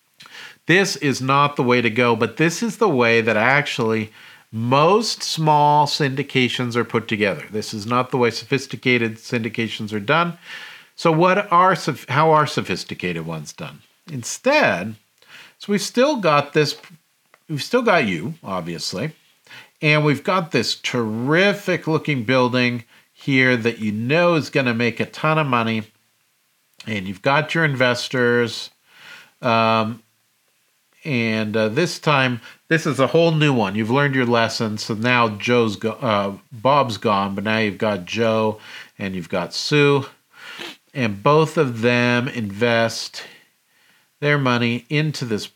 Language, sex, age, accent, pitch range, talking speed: English, male, 50-69, American, 115-150 Hz, 145 wpm